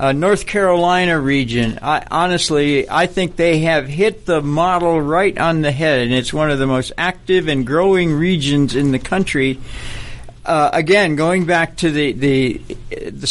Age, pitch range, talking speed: 60-79, 145-180 Hz, 160 wpm